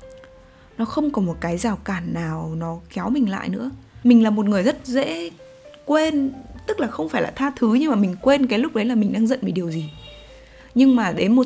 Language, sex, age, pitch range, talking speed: Vietnamese, female, 20-39, 195-260 Hz, 235 wpm